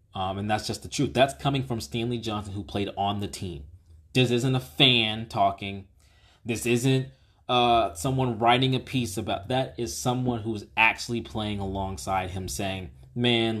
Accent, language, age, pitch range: American, English, 20-39, 95-115 Hz